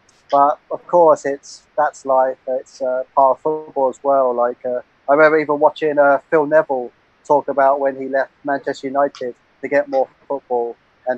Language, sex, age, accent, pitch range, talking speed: English, male, 30-49, British, 130-145 Hz, 185 wpm